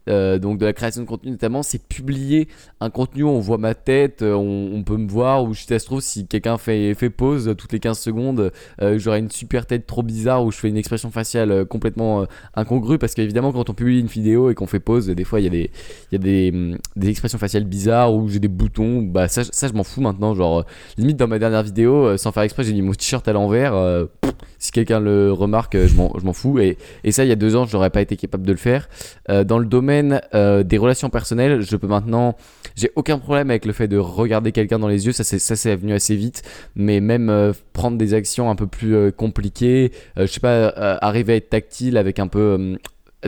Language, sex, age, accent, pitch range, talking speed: French, male, 20-39, French, 100-120 Hz, 260 wpm